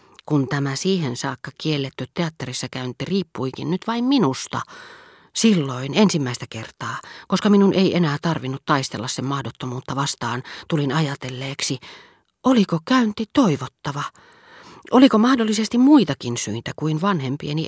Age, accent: 40-59, native